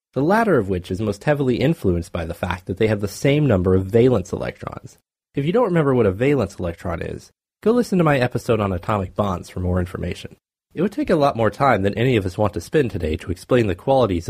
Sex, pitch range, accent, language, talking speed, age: male, 95-140 Hz, American, English, 250 wpm, 30-49